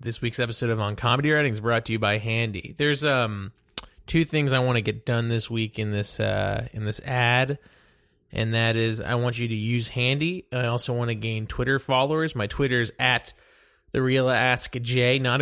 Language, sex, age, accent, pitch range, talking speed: English, male, 20-39, American, 110-140 Hz, 215 wpm